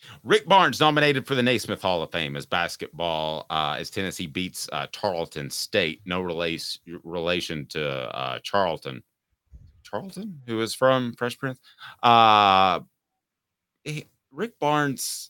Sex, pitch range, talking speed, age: male, 90-115 Hz, 135 wpm, 30-49